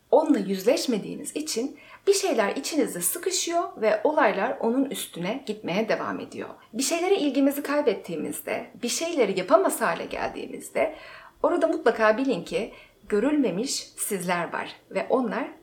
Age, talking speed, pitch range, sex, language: 40-59, 125 wpm, 210-280 Hz, female, Turkish